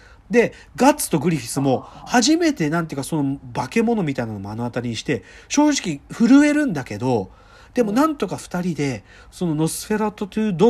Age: 40-59